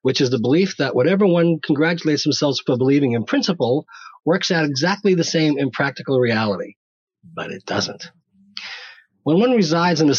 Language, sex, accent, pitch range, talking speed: English, male, American, 130-185 Hz, 170 wpm